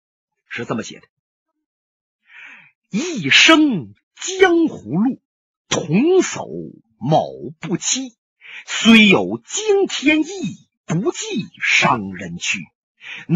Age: 50-69